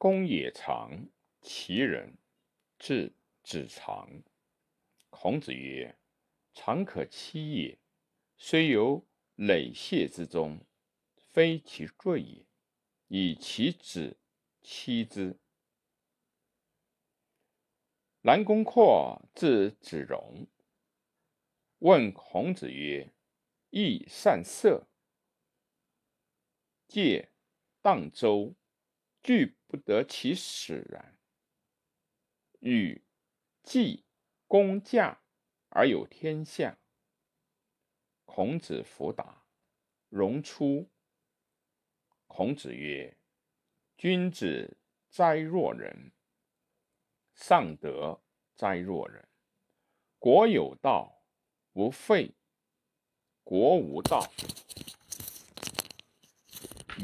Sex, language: male, Chinese